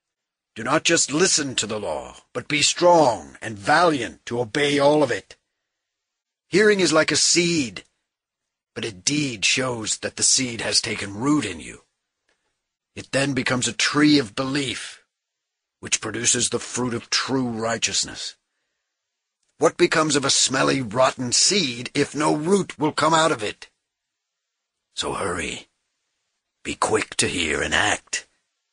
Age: 50-69